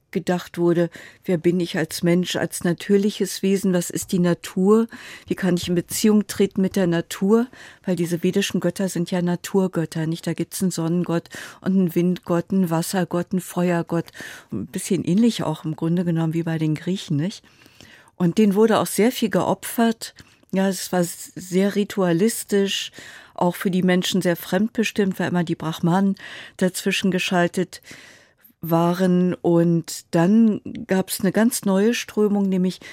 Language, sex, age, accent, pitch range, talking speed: German, female, 50-69, German, 170-195 Hz, 160 wpm